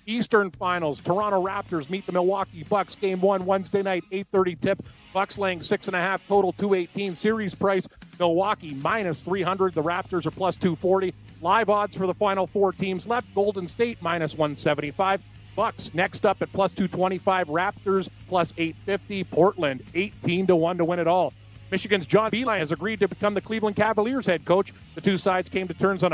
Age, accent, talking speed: 40-59, American, 175 wpm